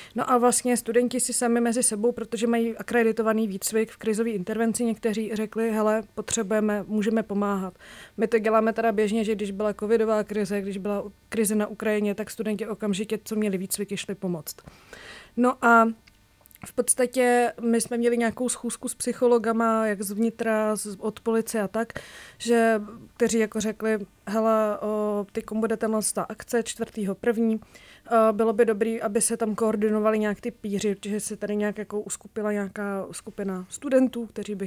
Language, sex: Czech, female